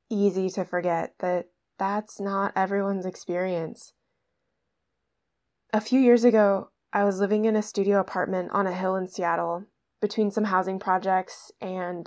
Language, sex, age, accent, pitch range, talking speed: English, female, 20-39, American, 185-225 Hz, 145 wpm